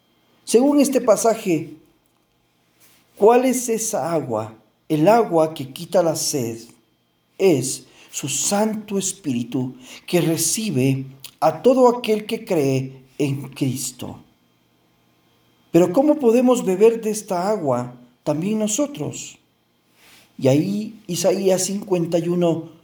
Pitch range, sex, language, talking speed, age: 130-190 Hz, male, Spanish, 100 wpm, 40-59